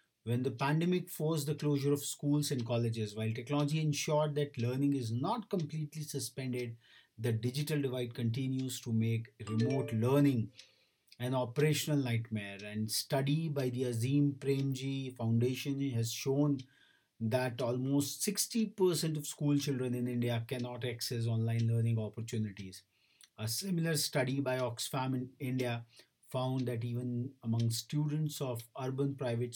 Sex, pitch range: male, 115-145 Hz